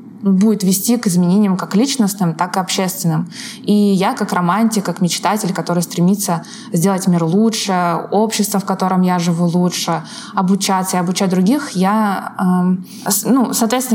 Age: 20-39